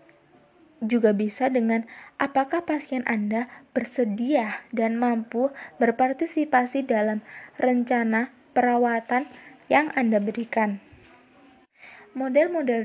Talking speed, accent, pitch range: 80 wpm, native, 225-265 Hz